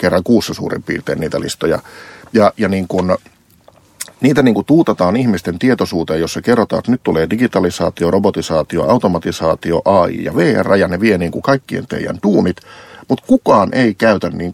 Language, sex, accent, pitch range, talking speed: Finnish, male, native, 90-140 Hz, 160 wpm